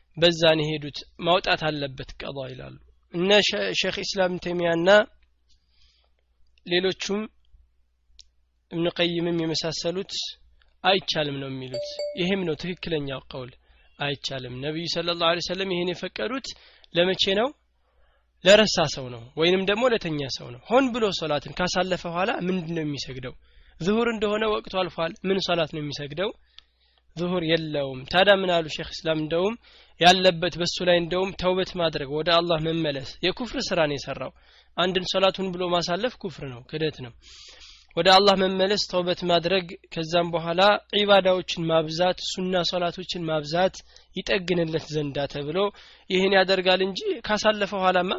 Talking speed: 95 wpm